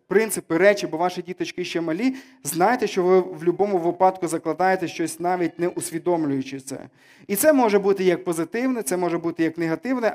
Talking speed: 175 wpm